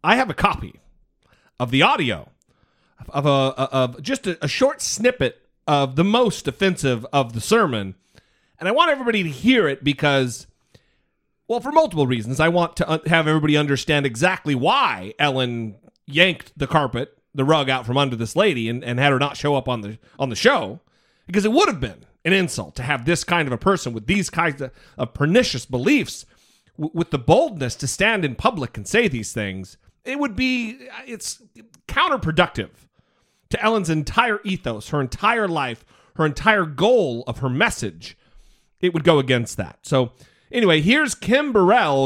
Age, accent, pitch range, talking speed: 40-59, American, 125-185 Hz, 180 wpm